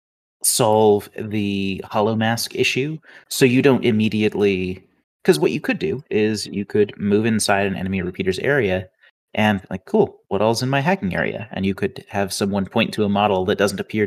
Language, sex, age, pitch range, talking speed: English, male, 30-49, 95-115 Hz, 190 wpm